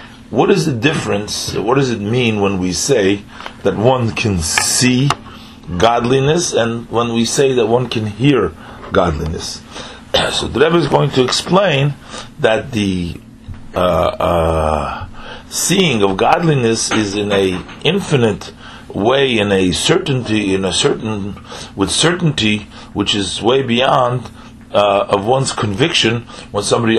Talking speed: 140 wpm